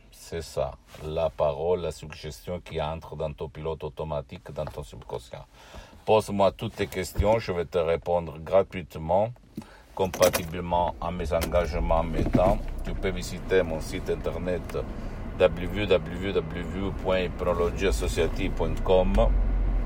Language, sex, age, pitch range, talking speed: Italian, male, 60-79, 85-105 Hz, 110 wpm